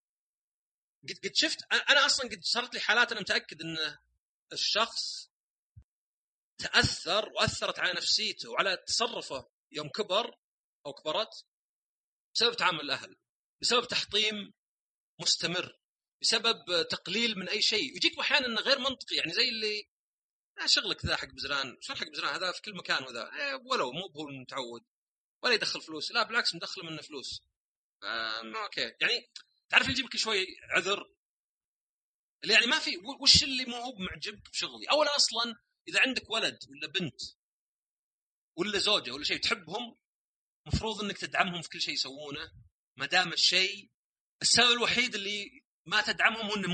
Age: 30-49